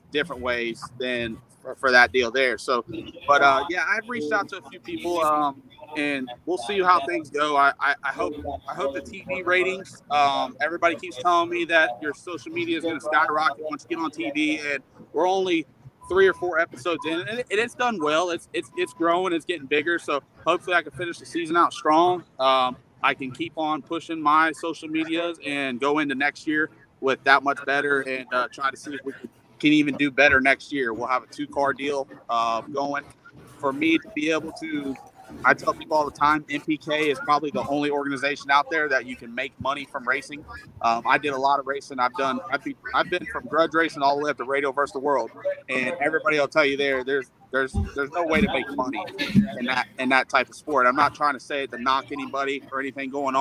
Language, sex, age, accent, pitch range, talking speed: English, male, 30-49, American, 135-170 Hz, 230 wpm